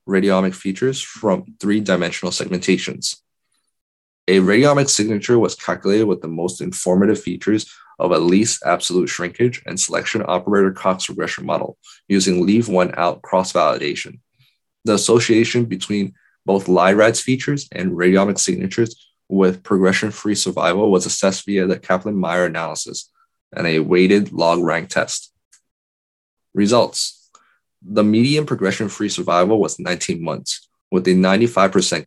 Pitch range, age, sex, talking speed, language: 90-110 Hz, 20-39, male, 120 wpm, English